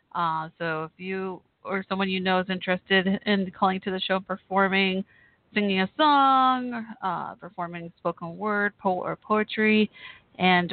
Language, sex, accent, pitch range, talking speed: English, female, American, 175-220 Hz, 145 wpm